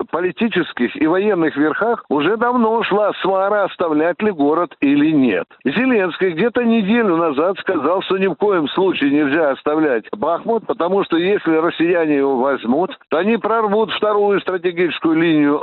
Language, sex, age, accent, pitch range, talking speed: Russian, male, 60-79, native, 155-210 Hz, 145 wpm